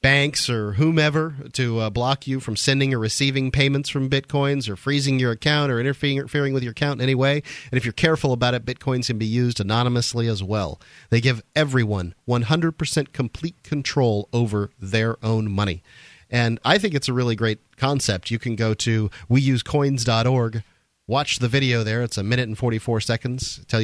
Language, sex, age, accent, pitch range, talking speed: English, male, 40-59, American, 115-135 Hz, 185 wpm